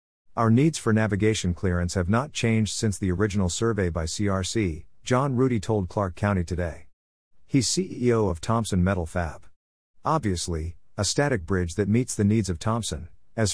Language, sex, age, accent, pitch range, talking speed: English, male, 50-69, American, 90-110 Hz, 165 wpm